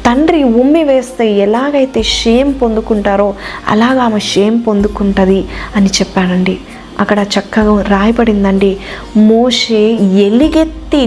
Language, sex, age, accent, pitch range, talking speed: Telugu, female, 20-39, native, 195-235 Hz, 90 wpm